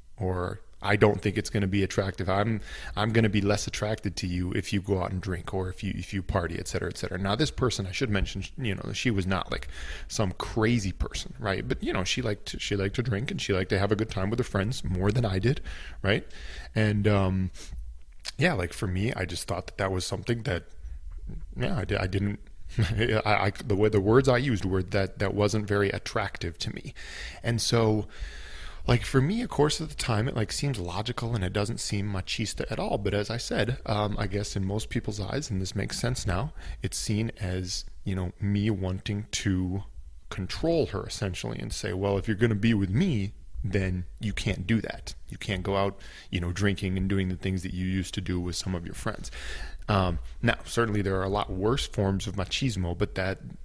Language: English